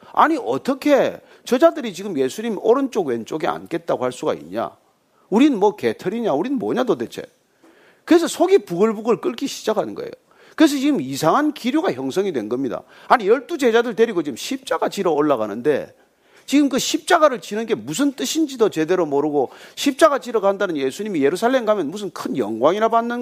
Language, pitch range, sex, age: Korean, 205-315 Hz, male, 40-59